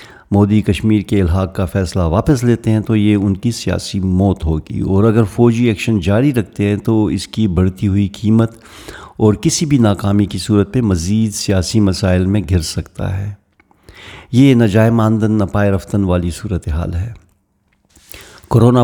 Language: Urdu